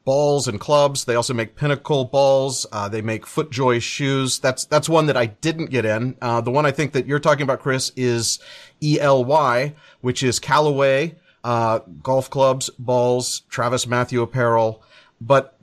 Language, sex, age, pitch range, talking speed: English, male, 40-59, 120-150 Hz, 175 wpm